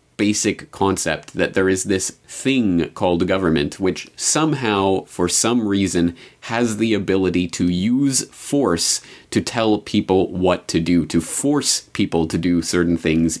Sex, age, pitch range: male, 30-49, 85-110 Hz